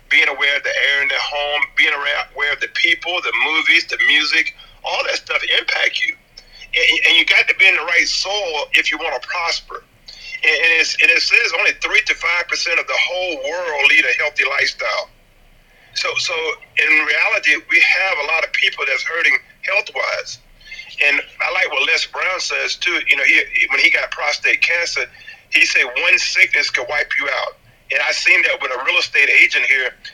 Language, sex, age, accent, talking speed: English, male, 40-59, American, 205 wpm